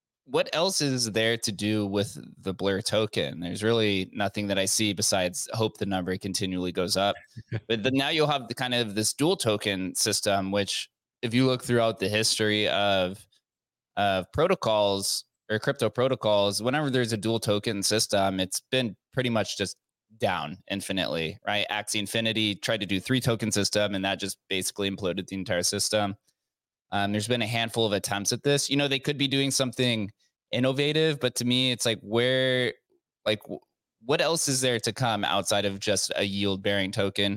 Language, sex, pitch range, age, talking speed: English, male, 100-125 Hz, 20-39, 185 wpm